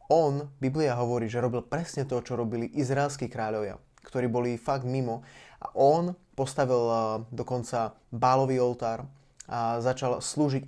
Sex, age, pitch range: male, 20-39, 125-145 Hz